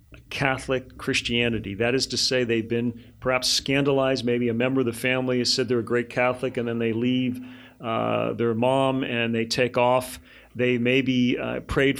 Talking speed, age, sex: 185 wpm, 40-59, male